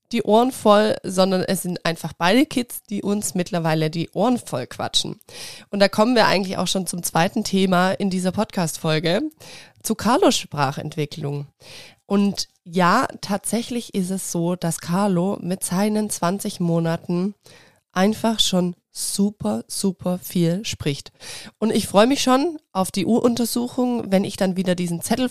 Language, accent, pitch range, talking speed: German, German, 170-210 Hz, 150 wpm